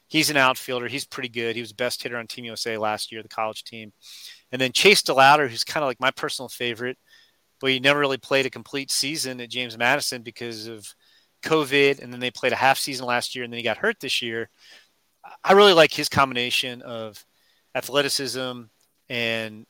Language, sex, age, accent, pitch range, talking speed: English, male, 30-49, American, 120-145 Hz, 205 wpm